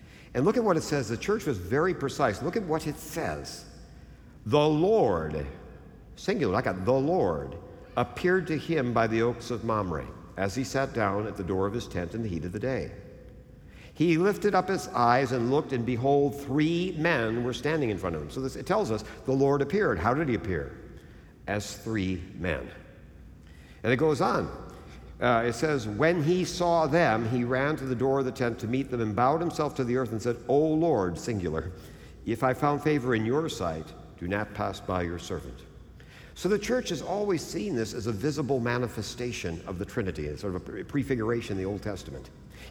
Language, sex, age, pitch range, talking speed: English, male, 60-79, 95-140 Hz, 205 wpm